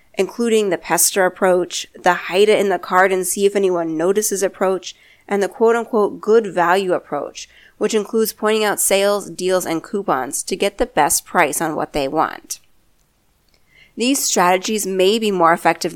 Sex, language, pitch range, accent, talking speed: female, English, 175-215 Hz, American, 135 wpm